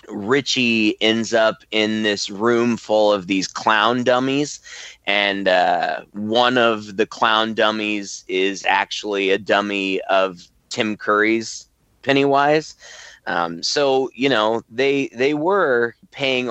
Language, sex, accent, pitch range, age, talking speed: English, male, American, 105-130 Hz, 20-39, 125 wpm